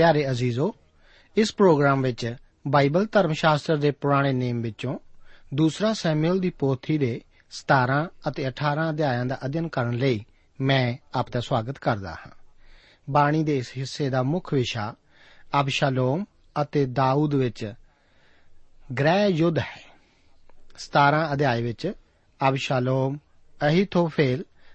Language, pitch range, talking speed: Punjabi, 130-160 Hz, 105 wpm